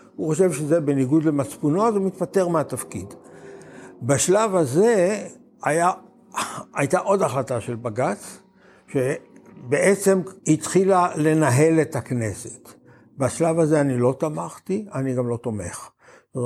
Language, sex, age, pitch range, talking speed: Hebrew, male, 60-79, 130-170 Hz, 115 wpm